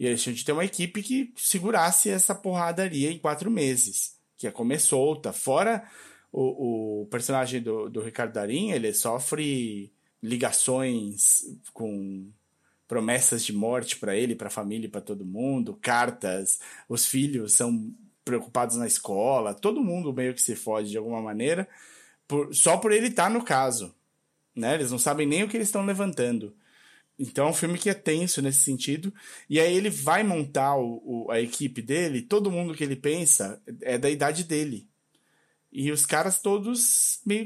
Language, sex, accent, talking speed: Portuguese, male, Brazilian, 175 wpm